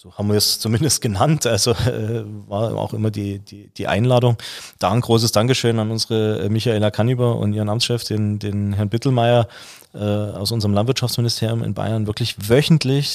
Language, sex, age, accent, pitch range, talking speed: German, male, 30-49, German, 105-125 Hz, 175 wpm